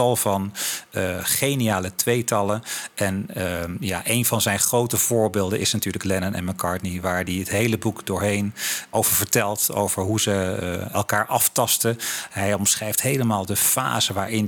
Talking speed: 155 wpm